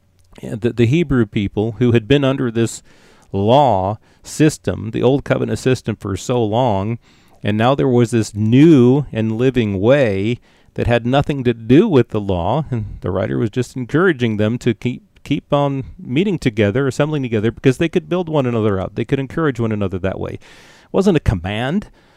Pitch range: 110-140 Hz